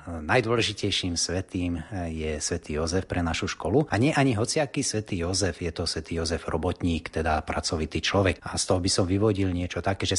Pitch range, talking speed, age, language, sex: 85-105 Hz, 185 wpm, 30-49, Slovak, male